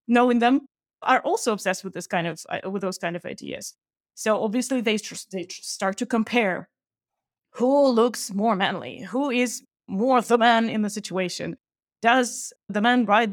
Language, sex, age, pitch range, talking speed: English, female, 20-39, 195-235 Hz, 165 wpm